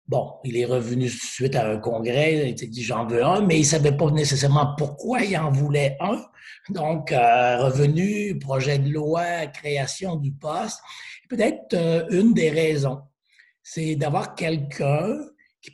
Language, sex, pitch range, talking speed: French, male, 140-170 Hz, 155 wpm